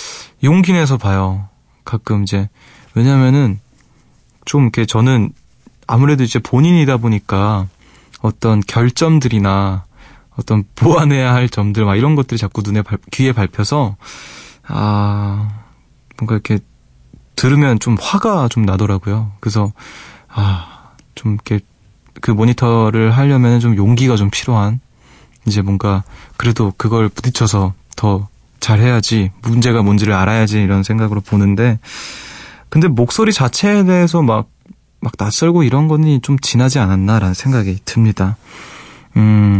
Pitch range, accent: 100-125 Hz, native